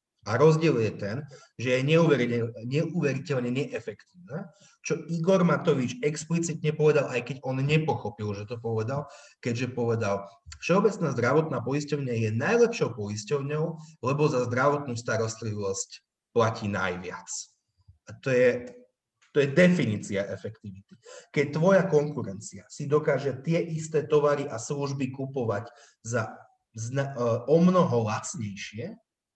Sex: male